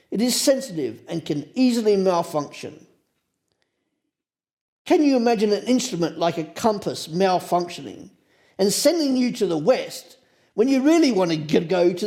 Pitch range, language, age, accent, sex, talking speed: 155-235 Hz, English, 50-69, British, male, 145 wpm